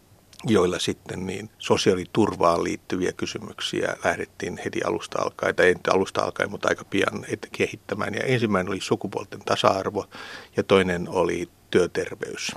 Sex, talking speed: male, 125 wpm